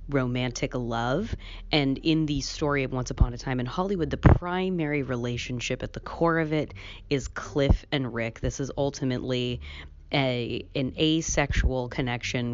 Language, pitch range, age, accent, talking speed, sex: English, 120-135 Hz, 20-39, American, 155 wpm, female